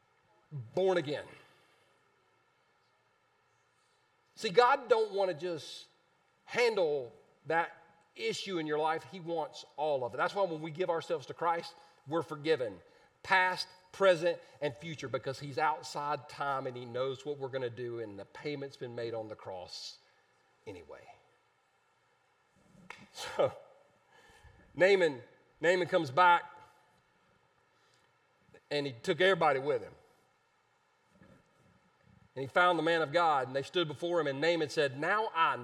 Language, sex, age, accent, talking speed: English, male, 40-59, American, 140 wpm